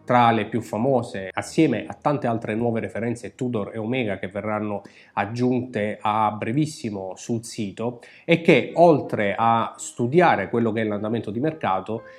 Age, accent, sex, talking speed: 30-49, native, male, 155 wpm